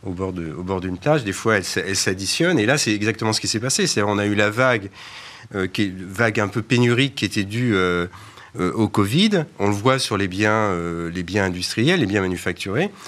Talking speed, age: 235 wpm, 40-59